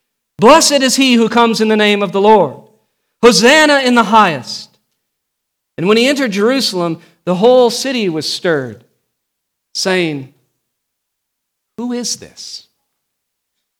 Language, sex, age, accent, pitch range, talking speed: English, male, 50-69, American, 160-225 Hz, 125 wpm